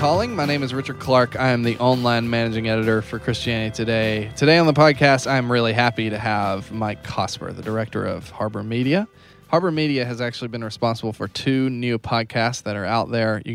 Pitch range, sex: 110-130 Hz, male